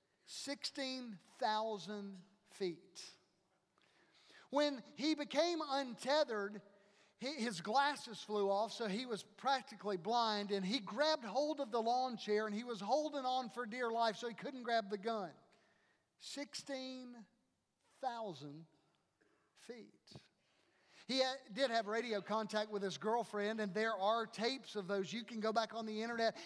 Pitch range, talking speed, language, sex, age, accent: 210-270 Hz, 135 wpm, English, male, 50-69, American